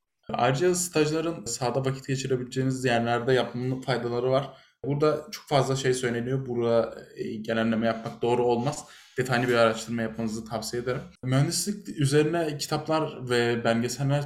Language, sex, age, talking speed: Turkish, male, 20-39, 125 wpm